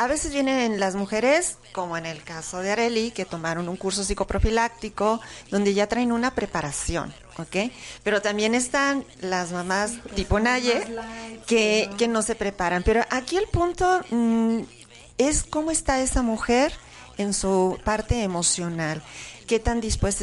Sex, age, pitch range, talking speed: female, 40-59, 185-230 Hz, 150 wpm